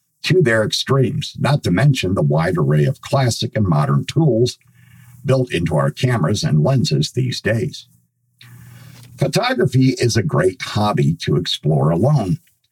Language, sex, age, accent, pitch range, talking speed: English, male, 50-69, American, 115-140 Hz, 140 wpm